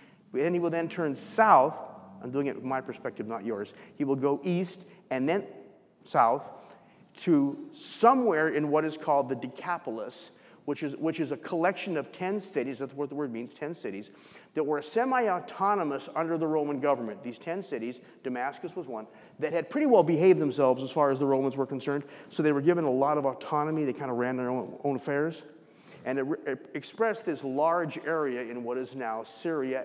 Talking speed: 195 wpm